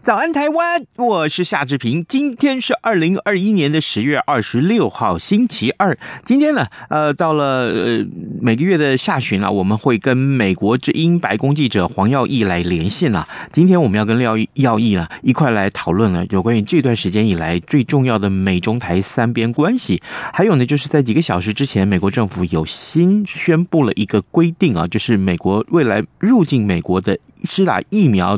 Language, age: Chinese, 30-49